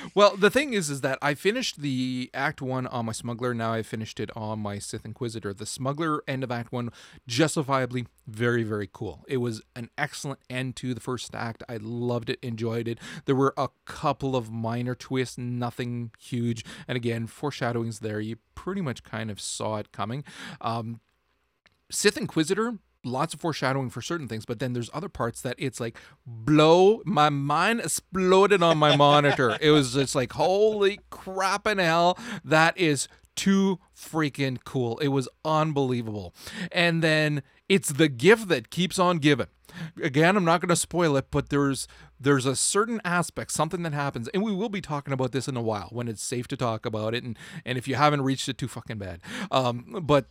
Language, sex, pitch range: English, male, 120-165 Hz